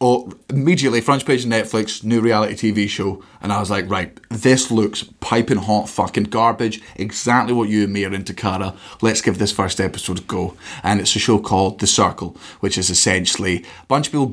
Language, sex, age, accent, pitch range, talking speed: English, male, 30-49, British, 105-130 Hz, 210 wpm